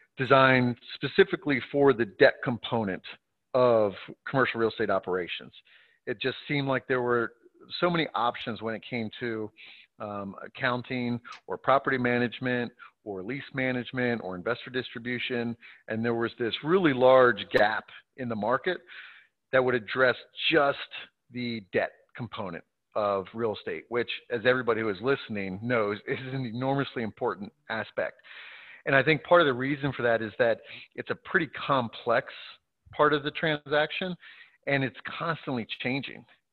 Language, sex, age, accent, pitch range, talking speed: English, male, 40-59, American, 115-135 Hz, 150 wpm